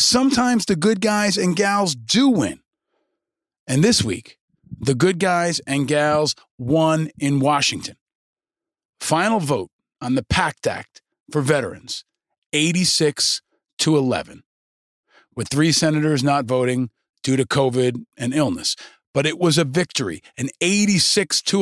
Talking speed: 135 wpm